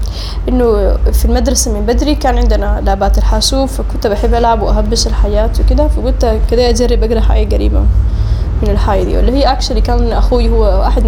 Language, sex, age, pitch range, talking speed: Arabic, female, 10-29, 205-250 Hz, 165 wpm